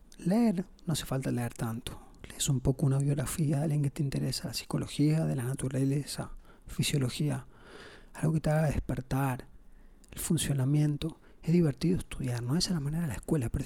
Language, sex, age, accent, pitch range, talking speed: Spanish, male, 30-49, Argentinian, 125-150 Hz, 185 wpm